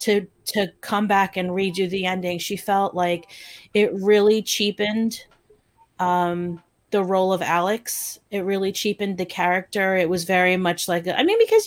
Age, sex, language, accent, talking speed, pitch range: 30-49, female, English, American, 165 wpm, 175-210 Hz